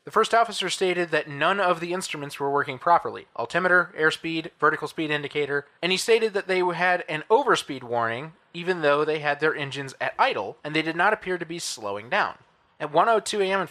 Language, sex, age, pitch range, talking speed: English, male, 30-49, 140-180 Hz, 205 wpm